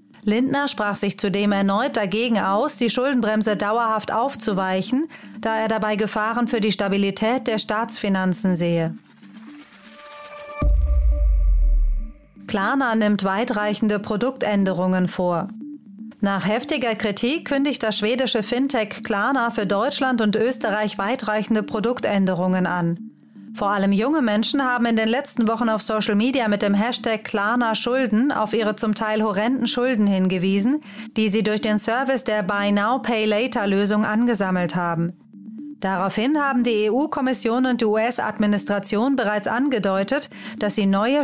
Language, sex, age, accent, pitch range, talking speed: German, female, 30-49, German, 205-240 Hz, 125 wpm